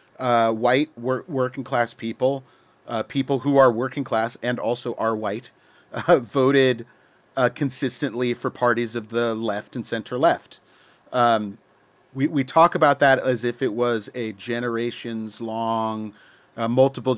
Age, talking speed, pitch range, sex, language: 40-59, 150 wpm, 115-135 Hz, male, English